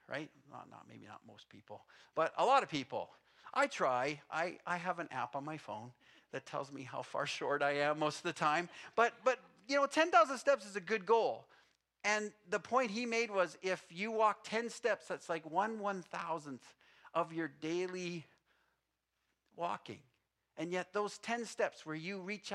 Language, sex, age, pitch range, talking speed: English, male, 50-69, 165-210 Hz, 190 wpm